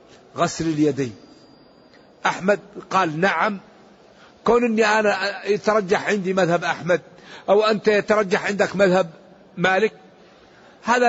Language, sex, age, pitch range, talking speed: Arabic, male, 60-79, 180-215 Hz, 105 wpm